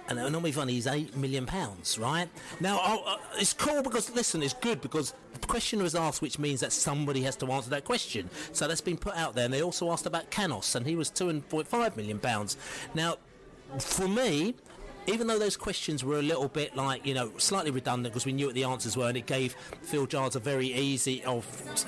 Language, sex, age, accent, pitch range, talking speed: English, male, 40-59, British, 125-160 Hz, 220 wpm